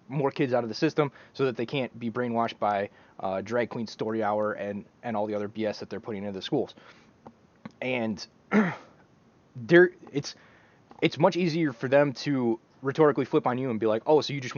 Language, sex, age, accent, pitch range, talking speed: English, male, 20-39, American, 115-155 Hz, 205 wpm